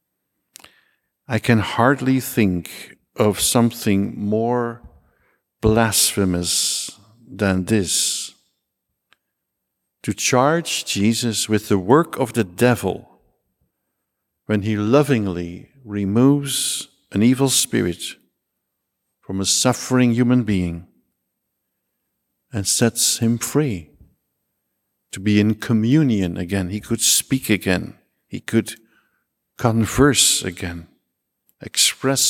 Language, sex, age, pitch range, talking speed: English, male, 50-69, 95-120 Hz, 90 wpm